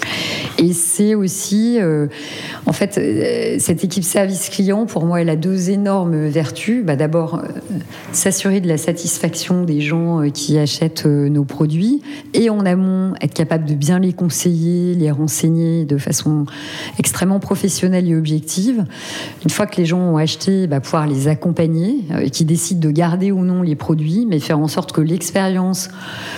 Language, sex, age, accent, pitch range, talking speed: French, female, 40-59, French, 155-190 Hz, 175 wpm